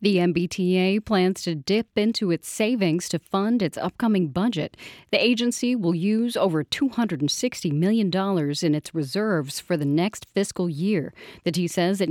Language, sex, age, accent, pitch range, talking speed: English, female, 40-59, American, 165-205 Hz, 160 wpm